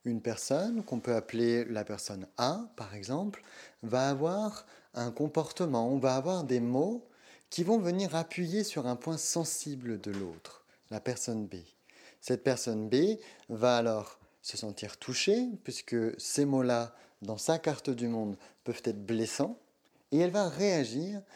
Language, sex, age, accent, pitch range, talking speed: French, male, 30-49, French, 115-160 Hz, 155 wpm